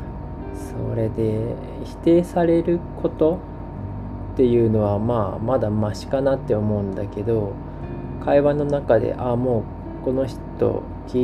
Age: 20-39